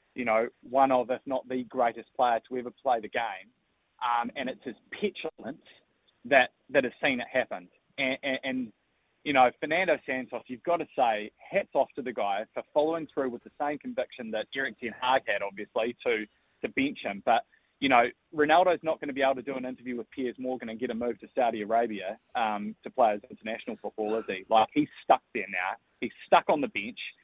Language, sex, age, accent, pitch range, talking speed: English, male, 20-39, Australian, 120-160 Hz, 220 wpm